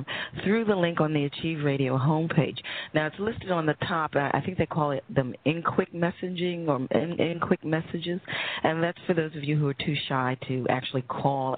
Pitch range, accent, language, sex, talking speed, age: 135-170 Hz, American, English, female, 210 wpm, 40-59